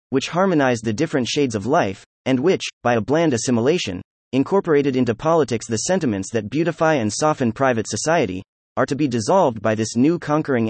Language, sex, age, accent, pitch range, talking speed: English, male, 30-49, American, 110-160 Hz, 180 wpm